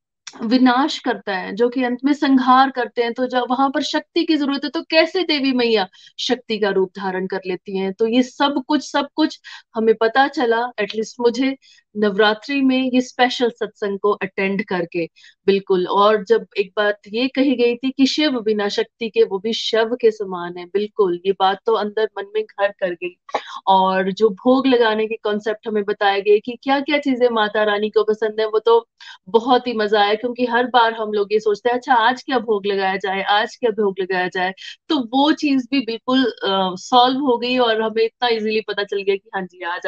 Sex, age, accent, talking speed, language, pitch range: female, 30-49, native, 215 wpm, Hindi, 200-250 Hz